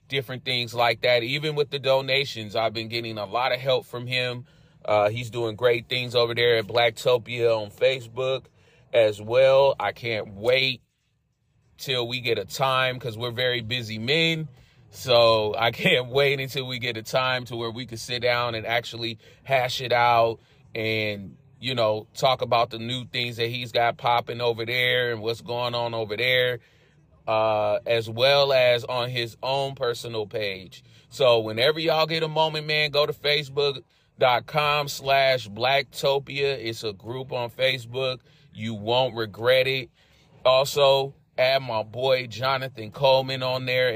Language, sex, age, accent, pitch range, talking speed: English, male, 30-49, American, 115-135 Hz, 165 wpm